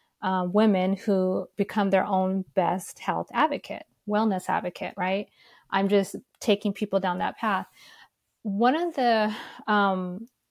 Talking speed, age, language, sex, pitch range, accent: 130 wpm, 30-49, English, female, 185-210 Hz, American